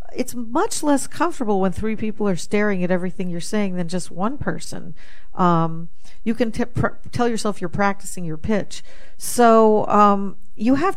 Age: 50-69